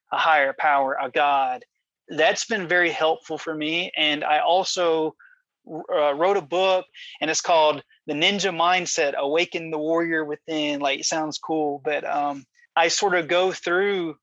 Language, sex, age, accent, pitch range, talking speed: English, male, 30-49, American, 155-180 Hz, 165 wpm